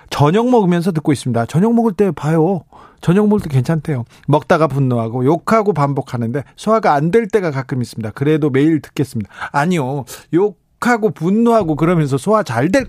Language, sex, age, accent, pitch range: Korean, male, 40-59, native, 130-195 Hz